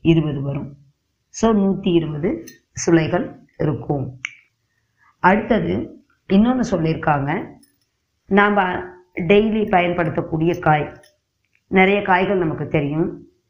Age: 20-39